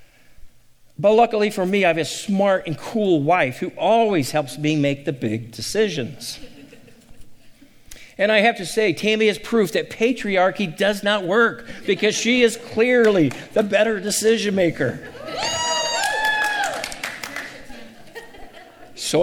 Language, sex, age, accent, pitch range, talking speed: English, male, 50-69, American, 155-215 Hz, 130 wpm